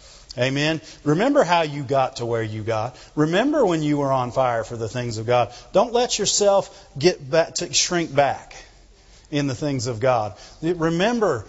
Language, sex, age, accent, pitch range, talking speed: English, male, 40-59, American, 140-205 Hz, 180 wpm